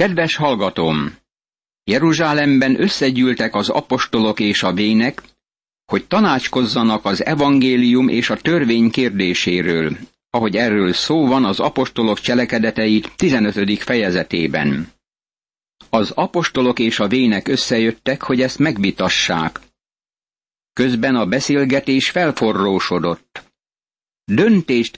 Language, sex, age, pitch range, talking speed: Hungarian, male, 60-79, 110-135 Hz, 95 wpm